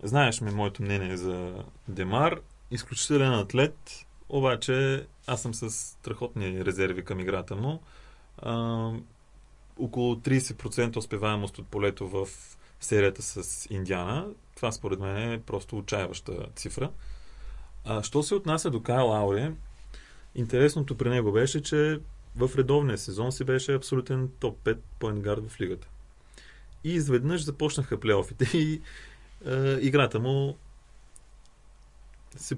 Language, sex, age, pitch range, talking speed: Bulgarian, male, 30-49, 100-130 Hz, 120 wpm